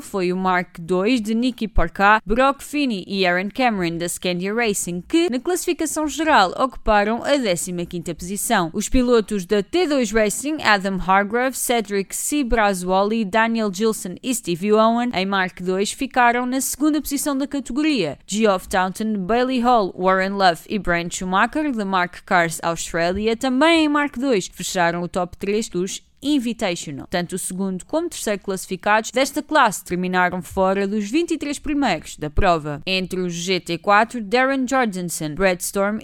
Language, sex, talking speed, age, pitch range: Portuguese, female, 155 wpm, 20-39, 185-255 Hz